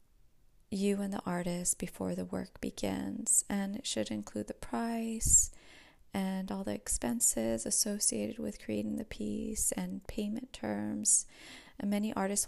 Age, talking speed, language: 20-39, 140 wpm, English